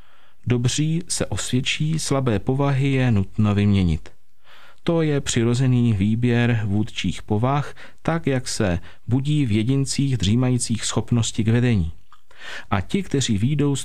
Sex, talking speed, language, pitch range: male, 125 wpm, Czech, 105-140 Hz